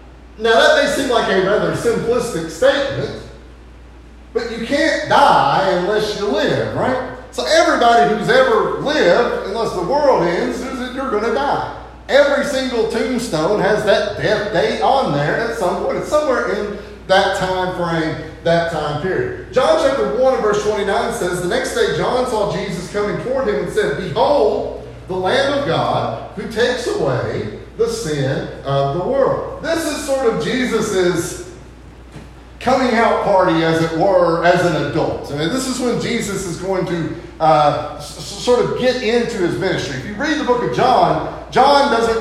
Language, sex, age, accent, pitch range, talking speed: English, male, 40-59, American, 170-245 Hz, 175 wpm